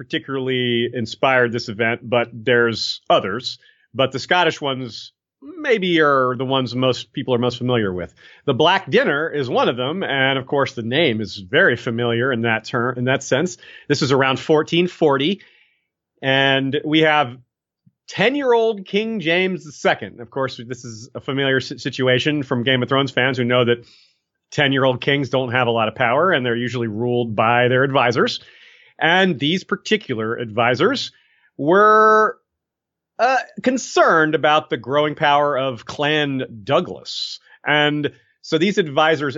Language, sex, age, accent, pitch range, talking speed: English, male, 30-49, American, 120-155 Hz, 160 wpm